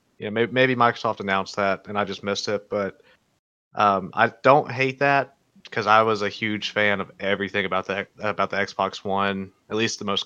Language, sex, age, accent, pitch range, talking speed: English, male, 20-39, American, 100-115 Hz, 210 wpm